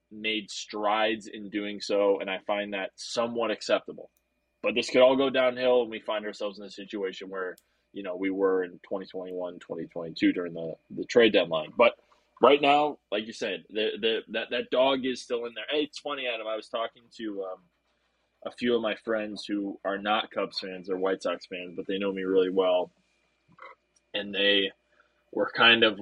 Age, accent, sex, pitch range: 20-39, American, male, 95-115 Hz